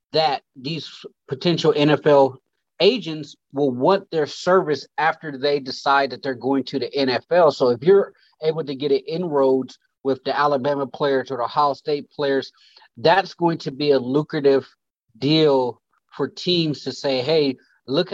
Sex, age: male, 30-49